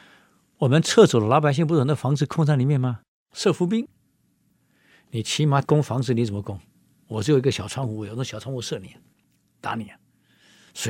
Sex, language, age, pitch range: male, Chinese, 50-69, 115-160 Hz